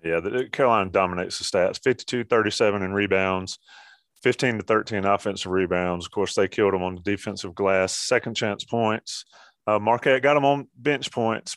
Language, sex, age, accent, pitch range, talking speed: English, male, 30-49, American, 100-120 Hz, 165 wpm